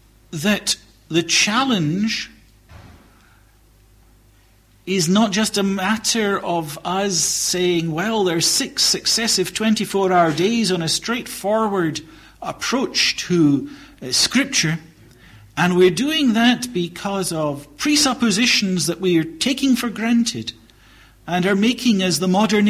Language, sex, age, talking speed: English, male, 50-69, 115 wpm